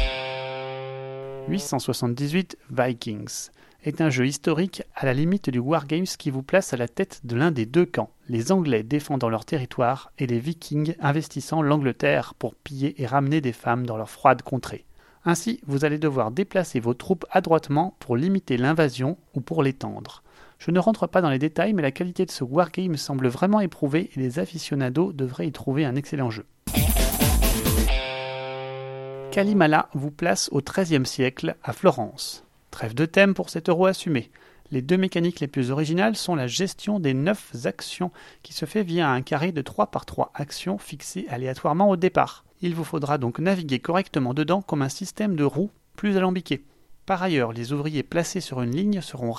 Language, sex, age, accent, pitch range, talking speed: French, male, 30-49, French, 130-180 Hz, 180 wpm